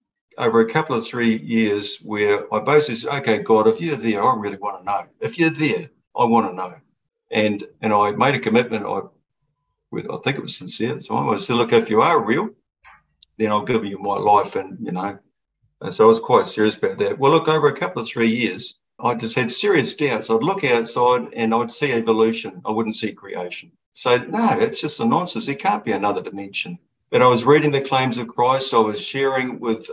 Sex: male